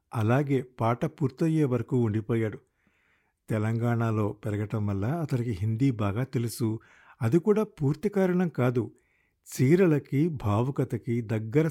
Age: 50-69